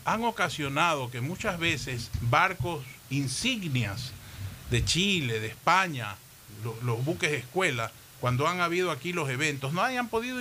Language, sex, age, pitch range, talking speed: Spanish, male, 50-69, 125-180 Hz, 145 wpm